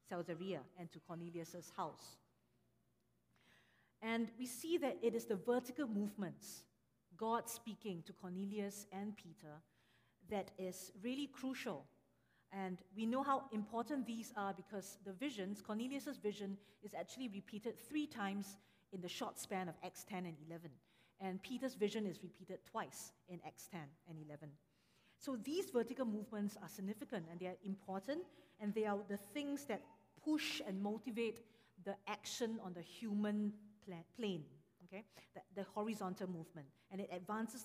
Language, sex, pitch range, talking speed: English, female, 180-235 Hz, 150 wpm